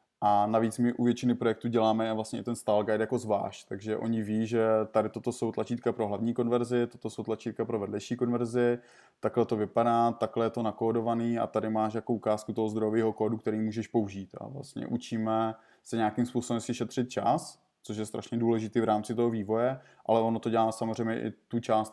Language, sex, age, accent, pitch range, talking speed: Czech, male, 20-39, native, 110-120 Hz, 200 wpm